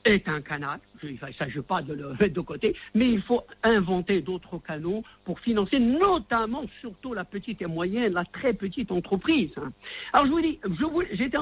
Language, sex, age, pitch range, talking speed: French, male, 60-79, 185-260 Hz, 195 wpm